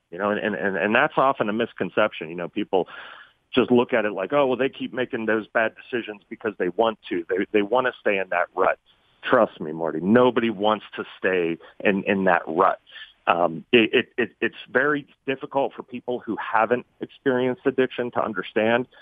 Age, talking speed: 40-59, 200 wpm